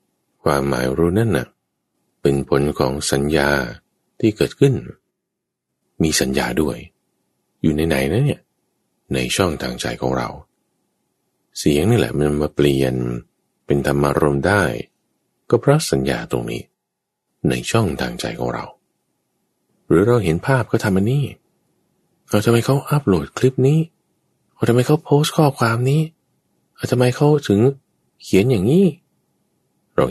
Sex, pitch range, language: male, 70-115 Hz, English